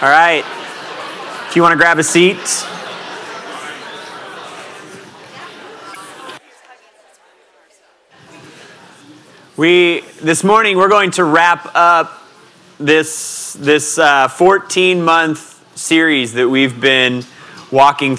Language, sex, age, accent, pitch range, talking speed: English, male, 30-49, American, 140-165 Hz, 85 wpm